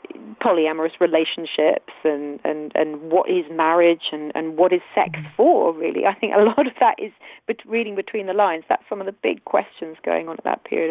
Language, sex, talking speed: English, female, 215 wpm